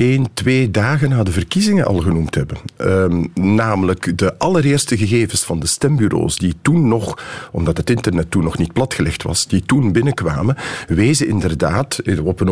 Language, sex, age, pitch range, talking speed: Dutch, male, 50-69, 95-130 Hz, 165 wpm